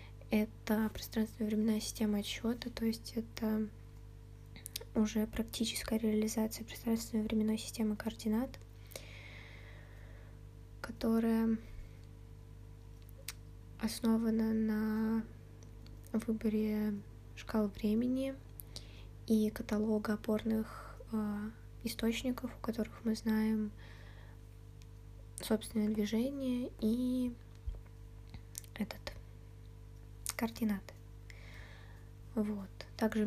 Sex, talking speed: female, 60 wpm